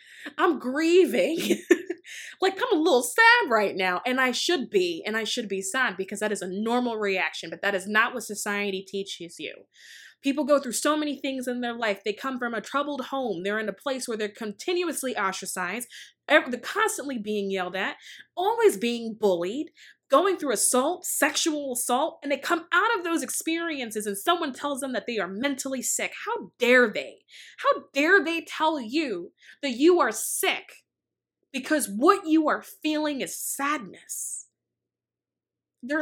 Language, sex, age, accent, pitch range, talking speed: English, female, 20-39, American, 215-305 Hz, 170 wpm